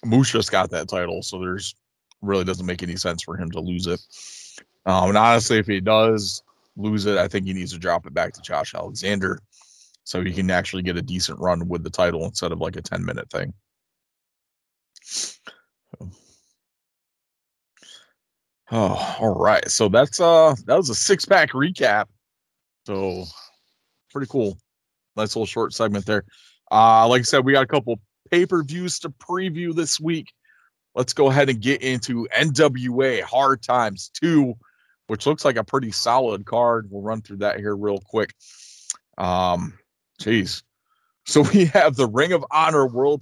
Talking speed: 175 wpm